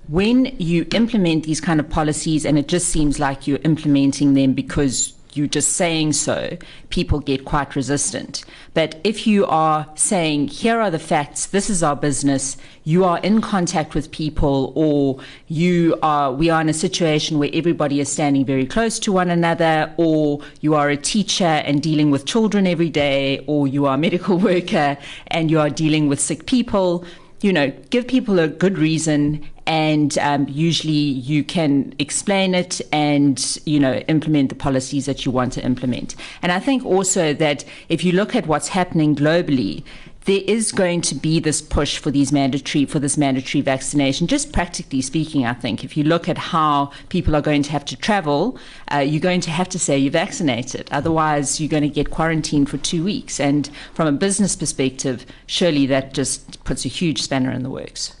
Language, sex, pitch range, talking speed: English, female, 140-175 Hz, 190 wpm